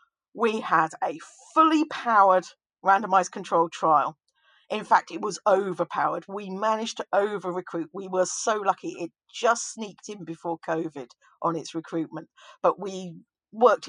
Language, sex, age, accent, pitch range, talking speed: English, female, 50-69, British, 185-245 Hz, 145 wpm